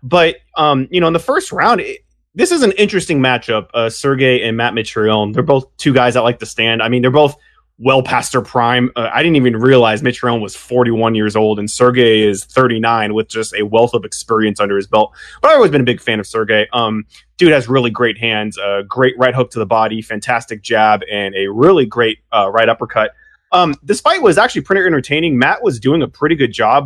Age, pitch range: 30-49, 115-150 Hz